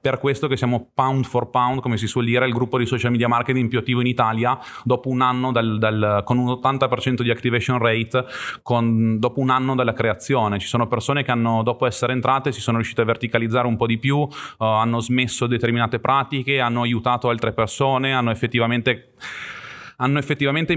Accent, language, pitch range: native, Italian, 115-130 Hz